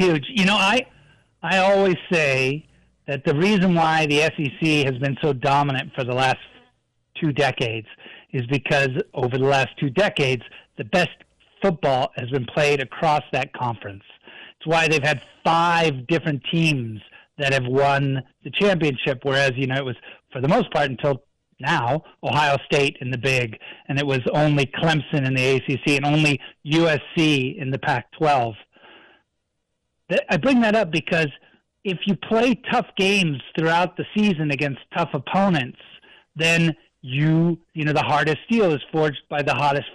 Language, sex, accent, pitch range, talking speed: English, male, American, 135-175 Hz, 160 wpm